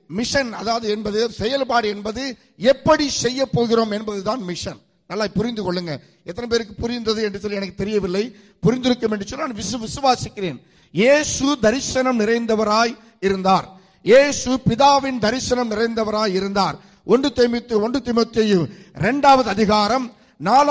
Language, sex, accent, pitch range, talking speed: English, male, Indian, 210-260 Hz, 110 wpm